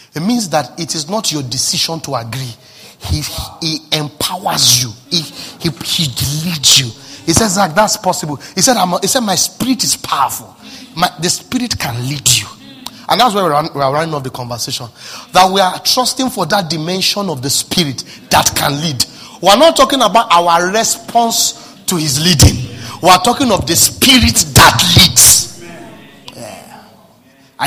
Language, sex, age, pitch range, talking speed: English, male, 30-49, 150-240 Hz, 175 wpm